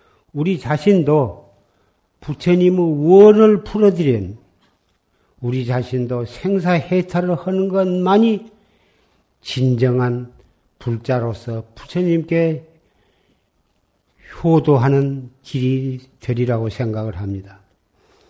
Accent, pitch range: native, 120-155 Hz